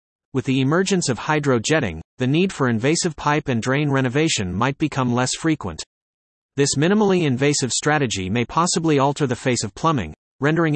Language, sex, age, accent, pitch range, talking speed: English, male, 40-59, American, 120-155 Hz, 160 wpm